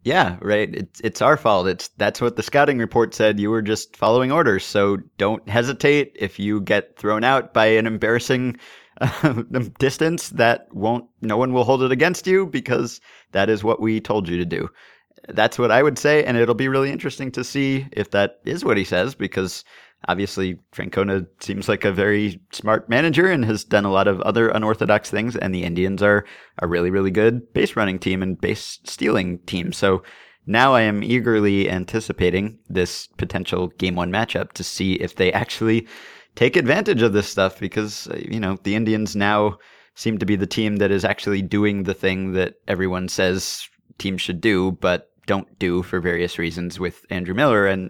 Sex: male